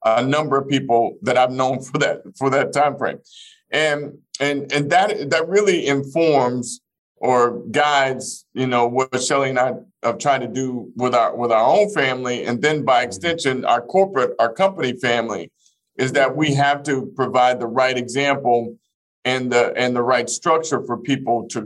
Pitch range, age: 120-140 Hz, 50-69